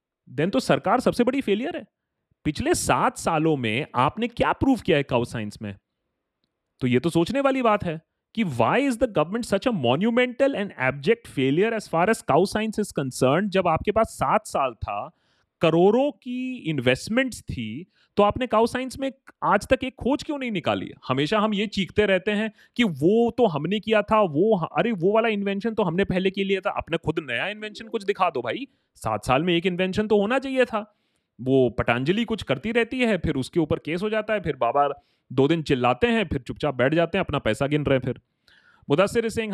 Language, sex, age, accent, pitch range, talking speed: Hindi, male, 30-49, native, 145-220 Hz, 210 wpm